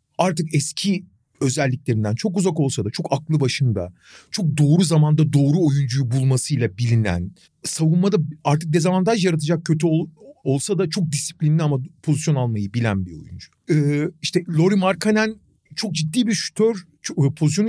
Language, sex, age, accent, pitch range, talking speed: Turkish, male, 40-59, native, 145-195 Hz, 145 wpm